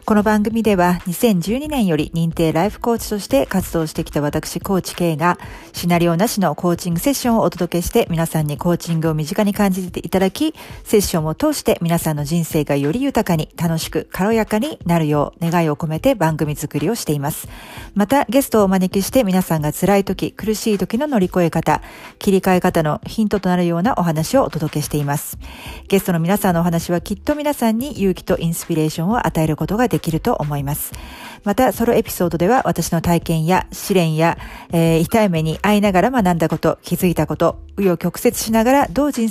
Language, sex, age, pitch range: Japanese, female, 50-69, 165-215 Hz